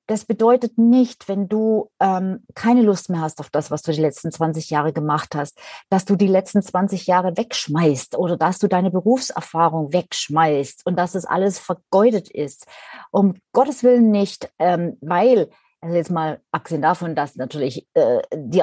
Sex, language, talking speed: female, German, 175 wpm